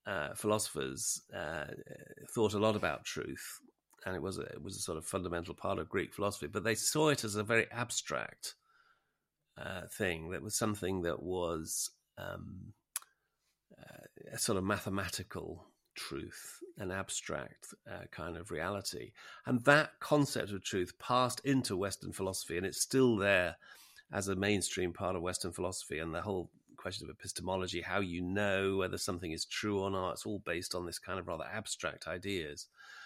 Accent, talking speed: British, 170 wpm